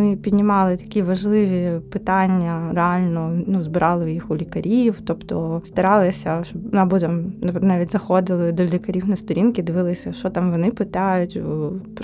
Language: Ukrainian